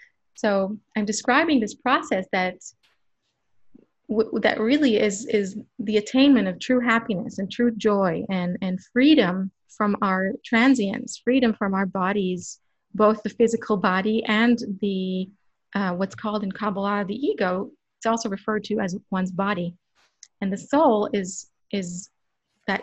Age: 30-49